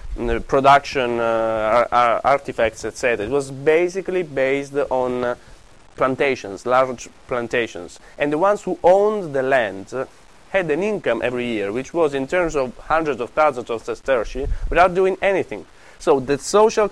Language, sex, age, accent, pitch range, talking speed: Italian, male, 30-49, native, 125-170 Hz, 160 wpm